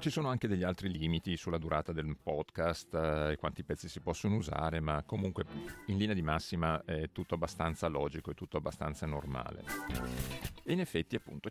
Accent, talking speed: native, 180 wpm